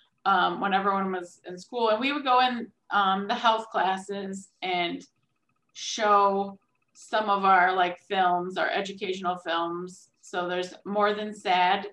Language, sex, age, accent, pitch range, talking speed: English, female, 20-39, American, 180-225 Hz, 150 wpm